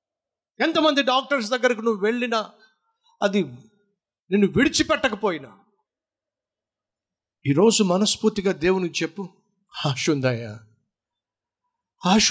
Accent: native